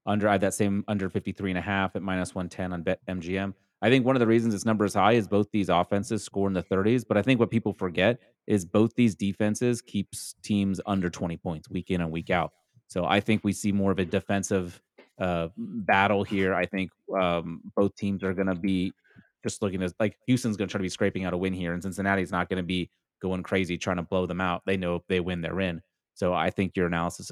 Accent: American